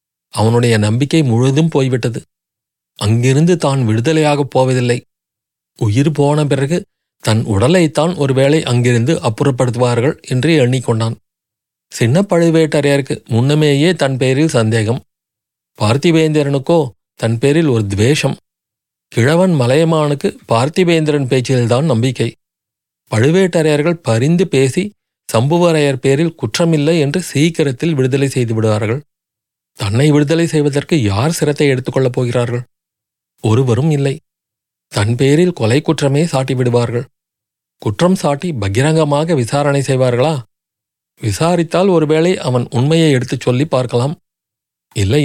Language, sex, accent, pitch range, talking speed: Tamil, male, native, 120-160 Hz, 95 wpm